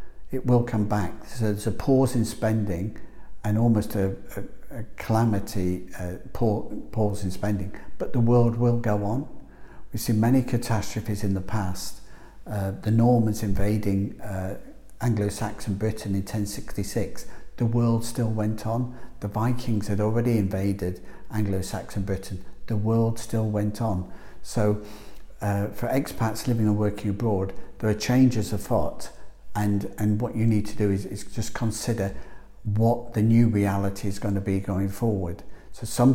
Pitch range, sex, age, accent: 100-115 Hz, male, 60-79, British